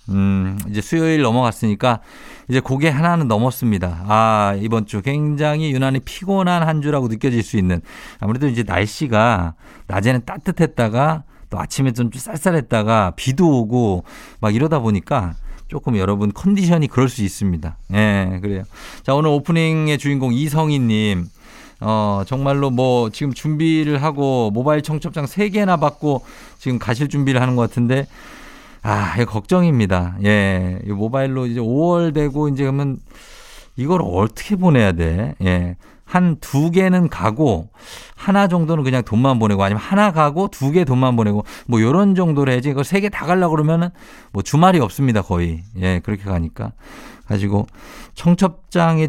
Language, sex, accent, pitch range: Korean, male, native, 105-155 Hz